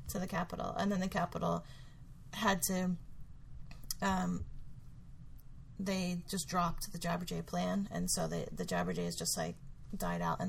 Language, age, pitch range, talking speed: English, 30-49, 125-195 Hz, 145 wpm